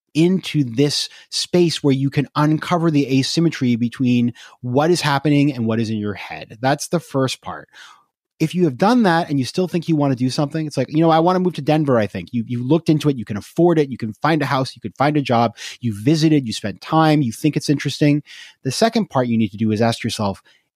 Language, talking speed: English, 250 wpm